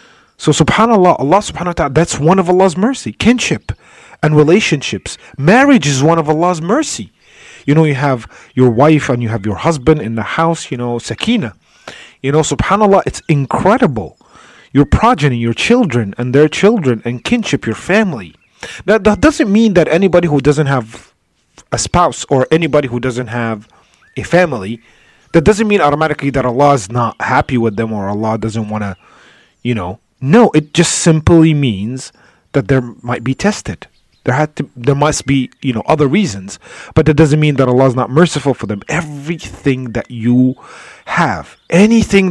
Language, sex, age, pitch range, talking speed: English, male, 30-49, 125-170 Hz, 175 wpm